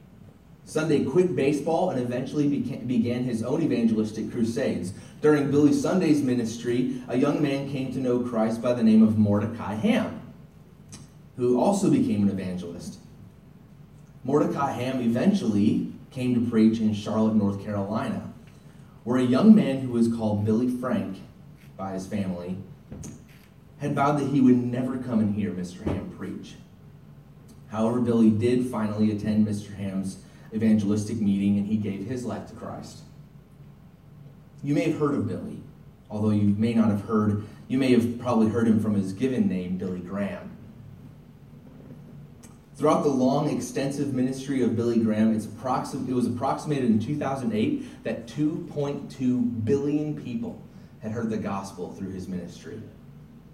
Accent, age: American, 30-49